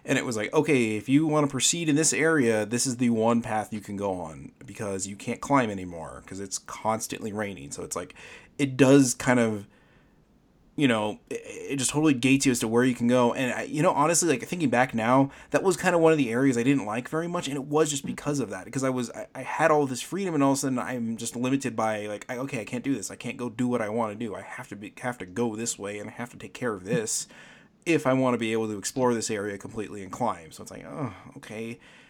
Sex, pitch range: male, 115-140 Hz